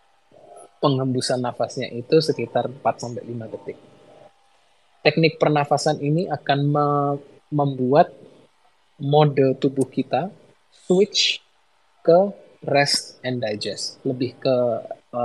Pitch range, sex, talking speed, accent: 120-150 Hz, male, 90 wpm, native